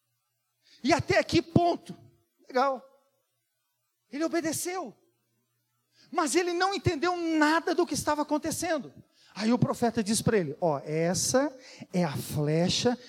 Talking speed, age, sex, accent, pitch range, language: 130 wpm, 40-59, male, Brazilian, 190-310 Hz, Portuguese